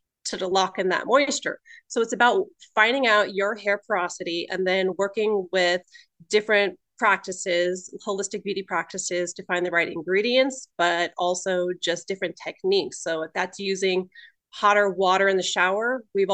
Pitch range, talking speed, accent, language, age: 185-215 Hz, 155 wpm, American, English, 30-49